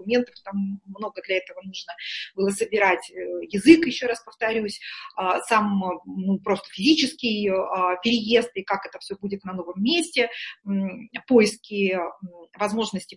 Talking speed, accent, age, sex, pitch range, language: 120 wpm, native, 20-39, female, 200-245 Hz, Russian